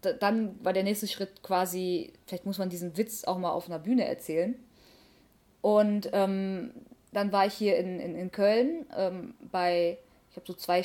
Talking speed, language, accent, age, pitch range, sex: 185 wpm, German, German, 20-39, 180-235 Hz, female